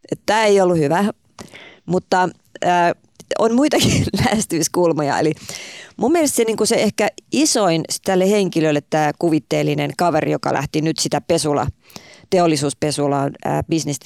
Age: 30-49